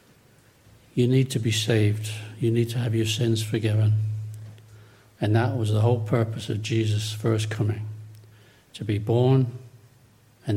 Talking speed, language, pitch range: 150 wpm, English, 110-120 Hz